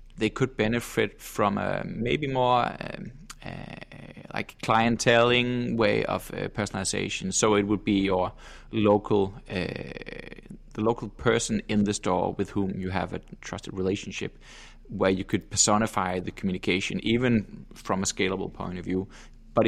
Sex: male